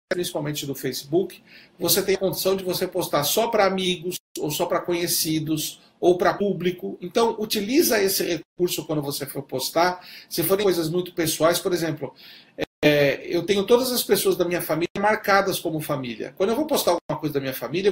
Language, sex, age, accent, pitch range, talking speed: Portuguese, male, 40-59, Brazilian, 150-190 Hz, 185 wpm